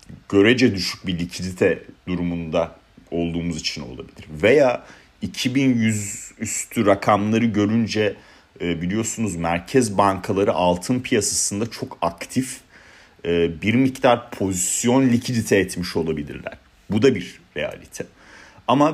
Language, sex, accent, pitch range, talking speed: Turkish, male, native, 90-120 Hz, 100 wpm